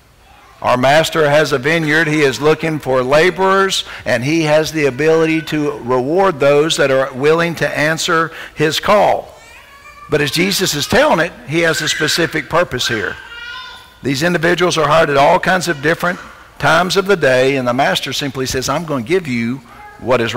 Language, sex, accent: English, male, American